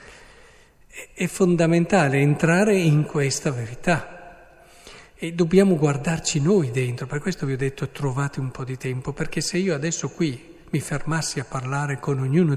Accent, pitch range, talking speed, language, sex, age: native, 130-165 Hz, 155 wpm, Italian, male, 50-69